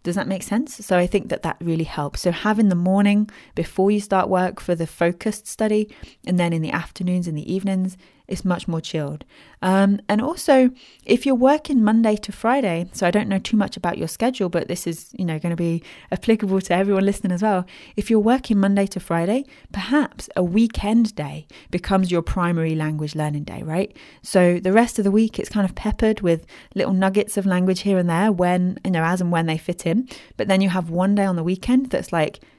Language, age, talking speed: English, 20-39, 220 wpm